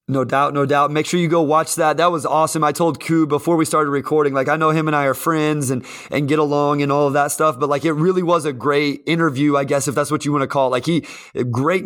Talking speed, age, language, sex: 295 wpm, 20-39, English, male